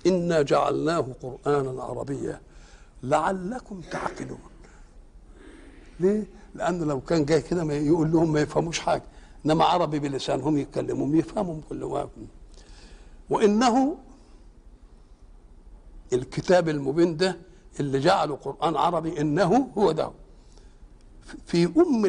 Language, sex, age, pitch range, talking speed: Arabic, male, 60-79, 135-185 Hz, 100 wpm